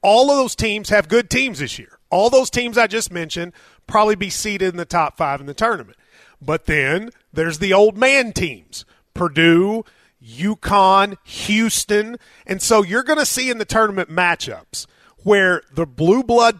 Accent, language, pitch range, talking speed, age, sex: American, English, 180-235 Hz, 175 wpm, 30-49, male